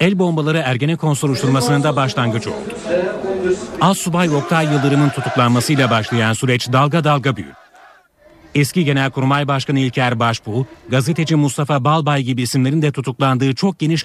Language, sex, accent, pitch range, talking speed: Turkish, male, native, 125-155 Hz, 130 wpm